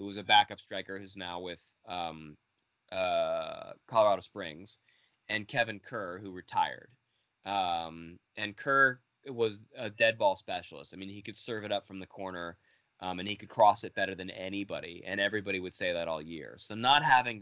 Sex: male